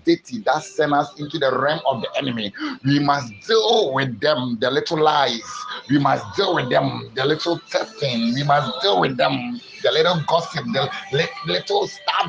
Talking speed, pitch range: 180 wpm, 140-170 Hz